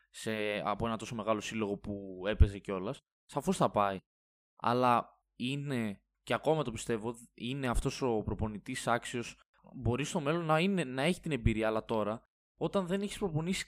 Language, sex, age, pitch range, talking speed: Greek, male, 20-39, 115-165 Hz, 165 wpm